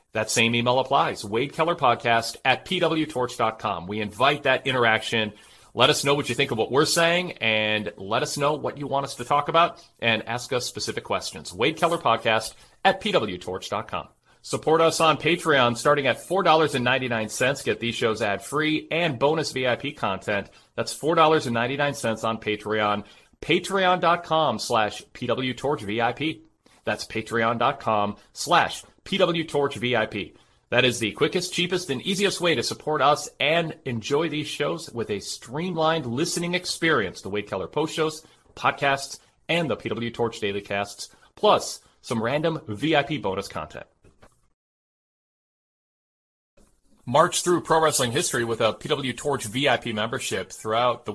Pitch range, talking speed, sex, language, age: 115-155 Hz, 145 wpm, male, English, 40-59